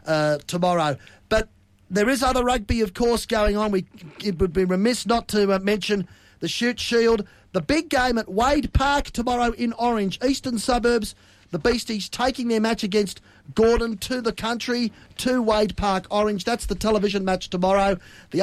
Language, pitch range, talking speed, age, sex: English, 180-225 Hz, 175 wpm, 40-59, male